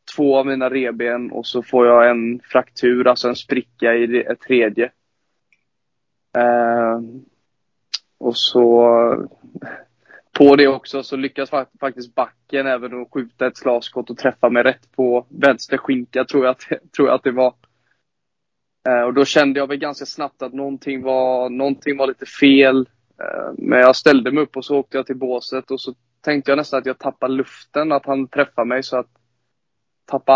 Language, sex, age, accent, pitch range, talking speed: Swedish, male, 20-39, native, 120-135 Hz, 175 wpm